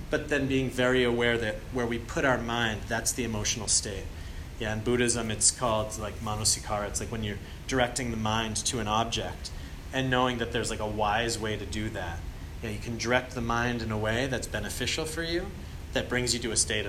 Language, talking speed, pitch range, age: English, 220 wpm, 100-125 Hz, 30-49